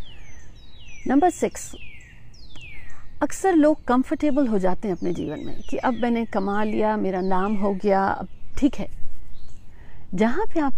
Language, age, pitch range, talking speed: Hindi, 50-69, 190-235 Hz, 145 wpm